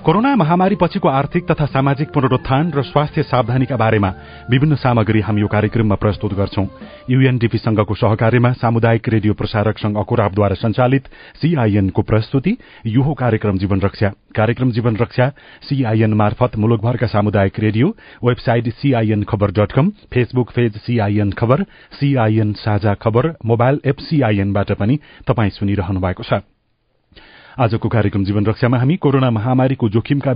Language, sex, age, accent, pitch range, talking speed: English, male, 40-59, Indian, 105-130 Hz, 95 wpm